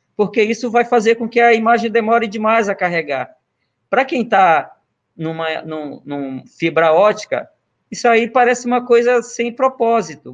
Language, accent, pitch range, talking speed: Portuguese, Brazilian, 150-235 Hz, 165 wpm